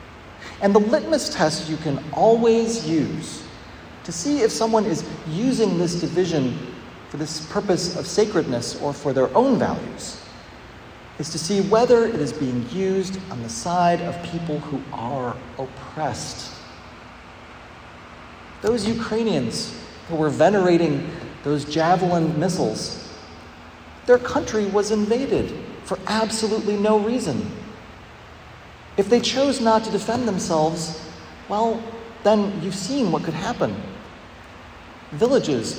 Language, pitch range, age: English, 155-220 Hz, 40-59